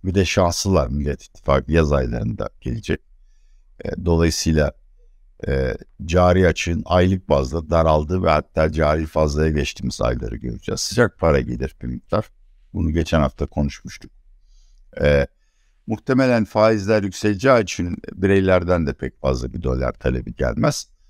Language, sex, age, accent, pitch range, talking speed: Turkish, male, 60-79, native, 75-100 Hz, 120 wpm